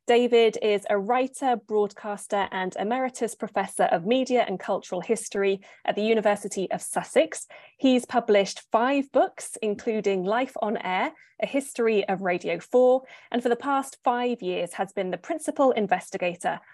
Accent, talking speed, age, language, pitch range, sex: British, 150 wpm, 20-39, English, 190-240 Hz, female